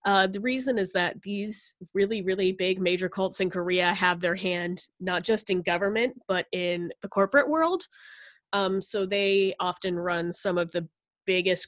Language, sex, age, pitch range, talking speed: English, female, 20-39, 175-205 Hz, 175 wpm